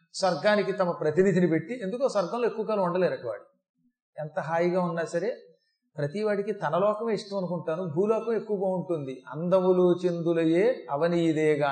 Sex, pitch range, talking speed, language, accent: male, 170-240 Hz, 125 wpm, Telugu, native